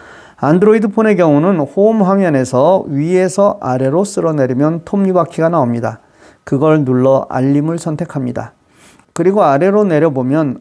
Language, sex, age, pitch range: Korean, male, 40-59, 140-195 Hz